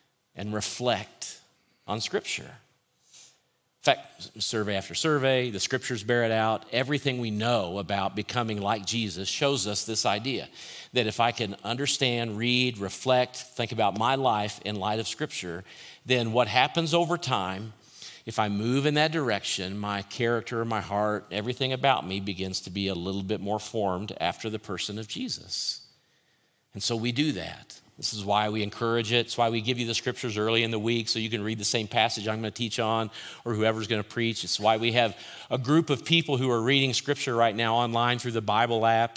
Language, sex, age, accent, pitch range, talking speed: English, male, 50-69, American, 105-125 Hz, 200 wpm